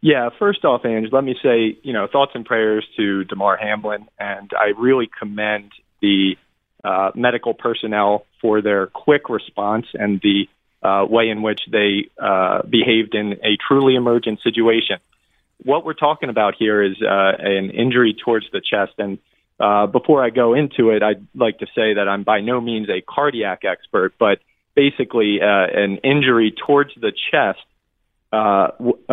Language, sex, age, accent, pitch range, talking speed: English, male, 30-49, American, 105-125 Hz, 165 wpm